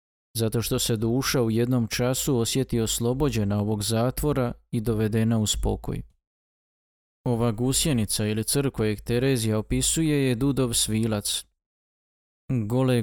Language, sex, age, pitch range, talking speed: Croatian, male, 20-39, 115-130 Hz, 115 wpm